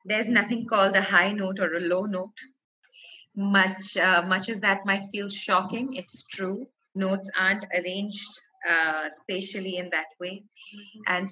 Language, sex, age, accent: English, female, 30-49, Indian